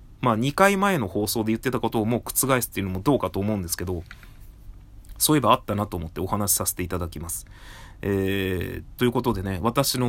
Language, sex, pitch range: Japanese, male, 95-135 Hz